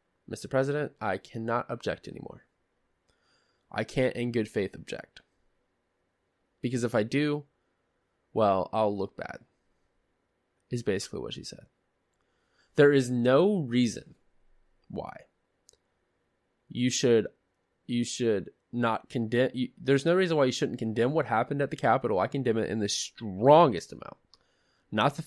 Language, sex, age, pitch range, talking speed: English, male, 20-39, 115-145 Hz, 135 wpm